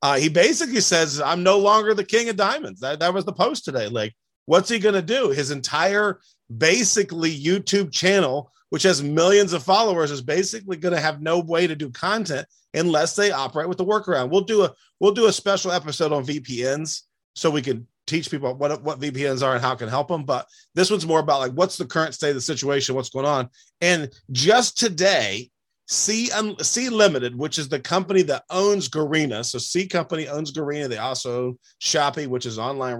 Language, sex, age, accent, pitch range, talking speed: English, male, 30-49, American, 140-185 Hz, 205 wpm